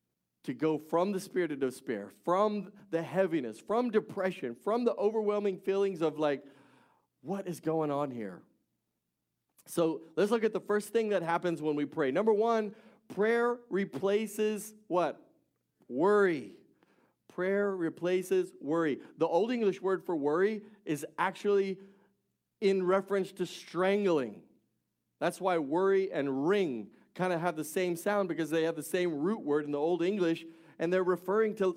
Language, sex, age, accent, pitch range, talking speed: English, male, 40-59, American, 155-200 Hz, 155 wpm